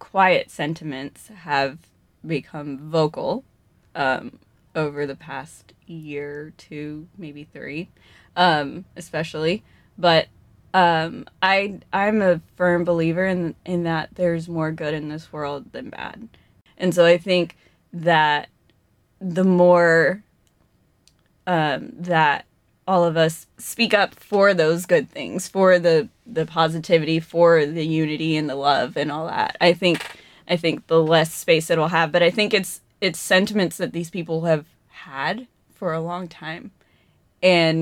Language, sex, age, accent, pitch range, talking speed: English, female, 20-39, American, 155-185 Hz, 145 wpm